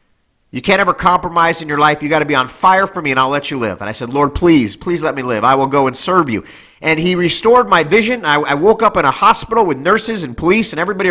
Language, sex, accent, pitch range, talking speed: English, male, American, 155-225 Hz, 285 wpm